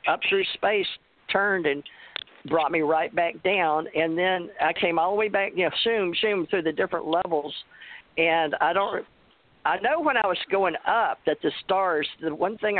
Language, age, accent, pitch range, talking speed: English, 50-69, American, 150-190 Hz, 195 wpm